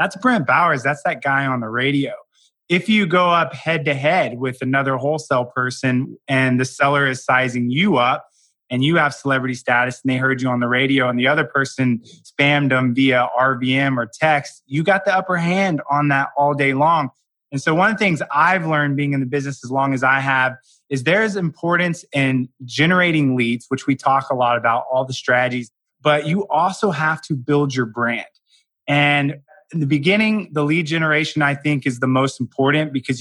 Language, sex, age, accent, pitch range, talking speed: English, male, 20-39, American, 130-155 Hz, 205 wpm